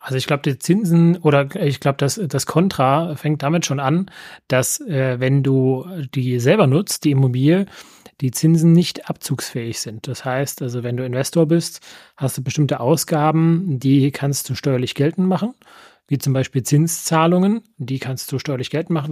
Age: 30-49